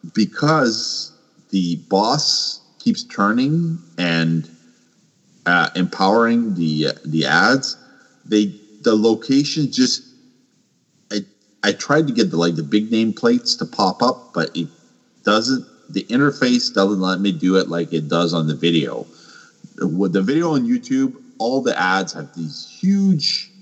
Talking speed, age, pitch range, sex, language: 145 wpm, 40-59, 85-135 Hz, male, English